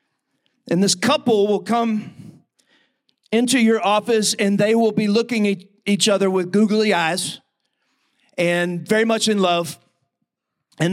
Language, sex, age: English, male, 40-59